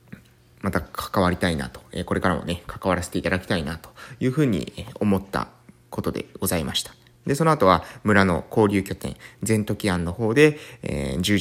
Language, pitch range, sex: Japanese, 95-135 Hz, male